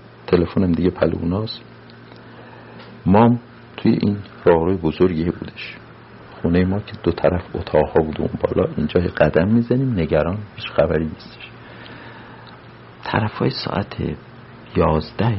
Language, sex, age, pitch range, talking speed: Persian, male, 50-69, 90-125 Hz, 115 wpm